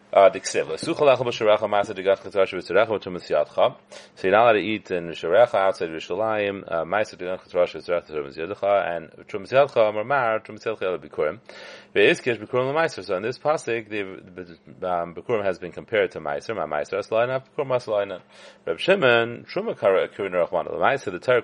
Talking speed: 65 wpm